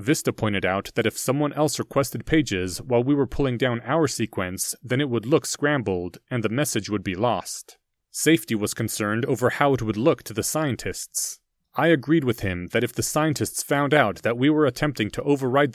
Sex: male